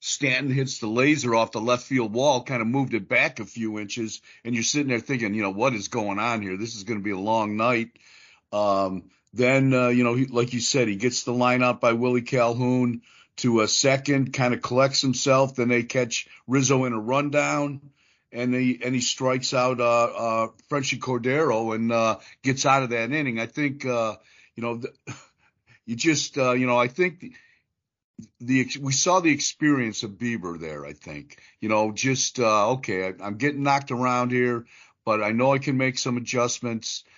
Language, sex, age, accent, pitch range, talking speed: English, male, 50-69, American, 115-135 Hz, 205 wpm